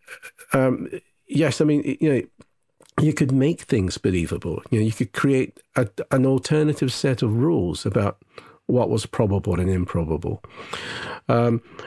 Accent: British